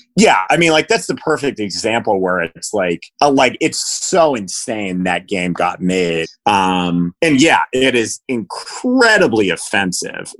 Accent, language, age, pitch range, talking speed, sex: American, English, 30-49, 95-120 Hz, 155 wpm, male